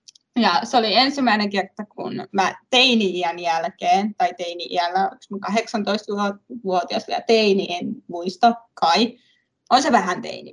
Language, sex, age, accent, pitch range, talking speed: Finnish, female, 20-39, native, 205-290 Hz, 120 wpm